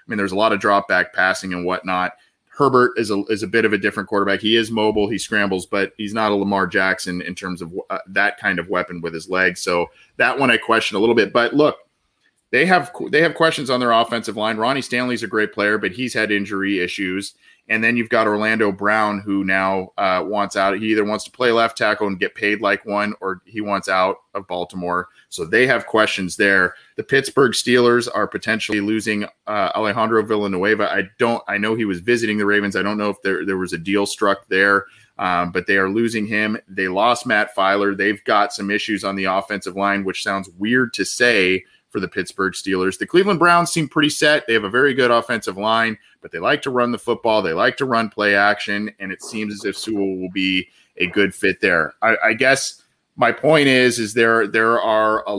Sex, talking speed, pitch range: male, 230 wpm, 100-115 Hz